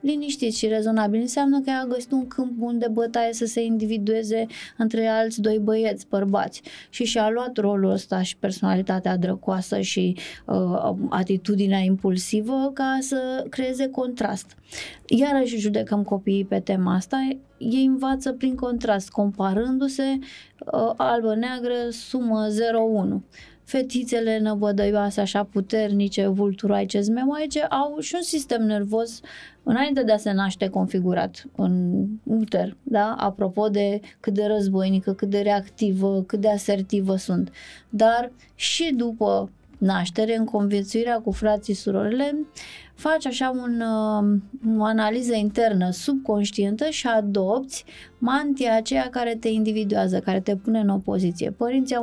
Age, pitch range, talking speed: 20-39, 205-250 Hz, 130 wpm